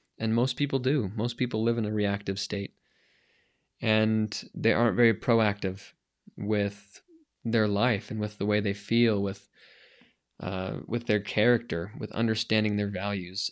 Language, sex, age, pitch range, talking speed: English, male, 20-39, 105-120 Hz, 150 wpm